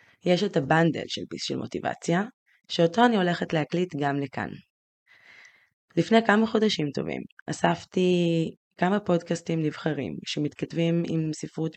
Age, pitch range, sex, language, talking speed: 20-39, 150-180 Hz, female, Hebrew, 120 wpm